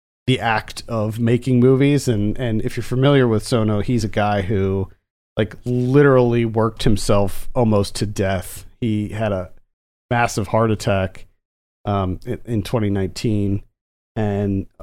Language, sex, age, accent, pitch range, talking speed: English, male, 40-59, American, 95-120 Hz, 135 wpm